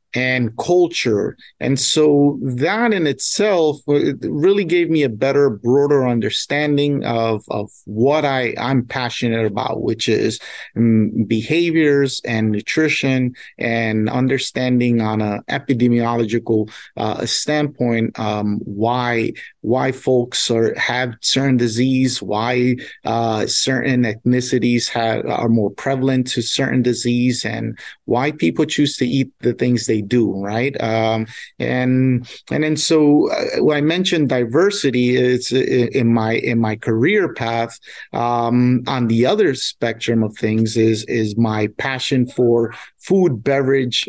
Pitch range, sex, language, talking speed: 115-135 Hz, male, English, 130 wpm